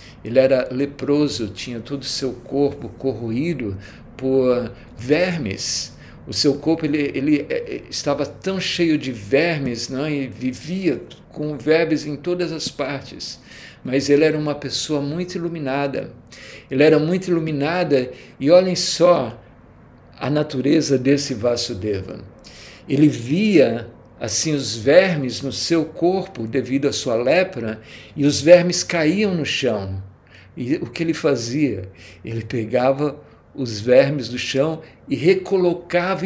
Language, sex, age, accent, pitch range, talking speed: Portuguese, male, 60-79, Brazilian, 130-160 Hz, 130 wpm